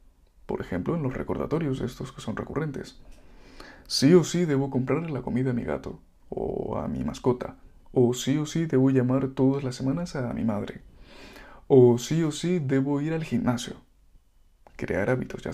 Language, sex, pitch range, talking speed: Spanish, male, 120-145 Hz, 180 wpm